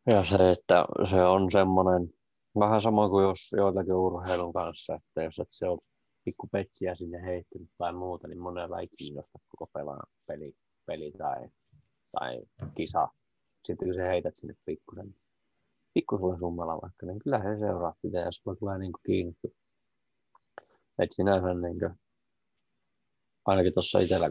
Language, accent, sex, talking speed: Finnish, native, male, 140 wpm